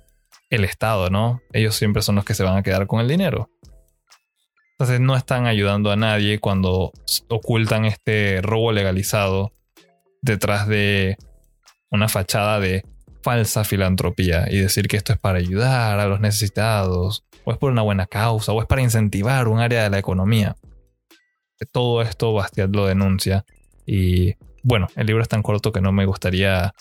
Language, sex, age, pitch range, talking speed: Spanish, male, 20-39, 95-115 Hz, 165 wpm